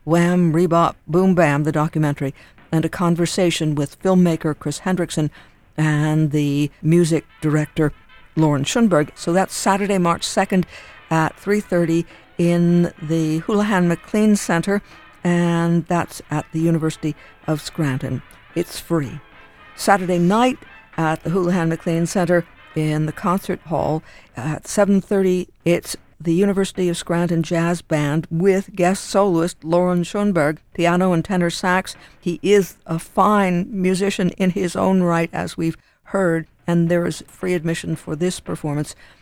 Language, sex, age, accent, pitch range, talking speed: English, female, 60-79, American, 160-185 Hz, 135 wpm